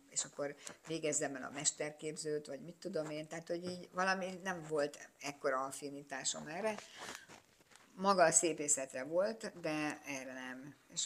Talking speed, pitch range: 145 wpm, 150-175 Hz